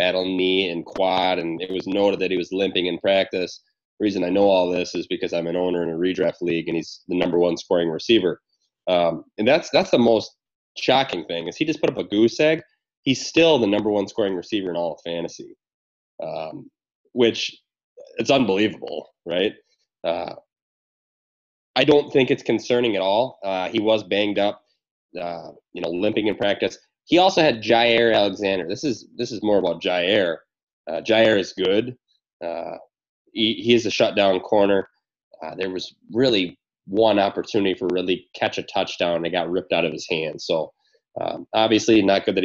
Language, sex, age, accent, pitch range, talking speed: English, male, 20-39, American, 90-120 Hz, 190 wpm